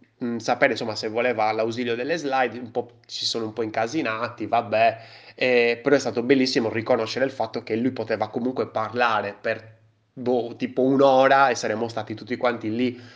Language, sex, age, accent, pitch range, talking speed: Italian, male, 20-39, native, 105-120 Hz, 165 wpm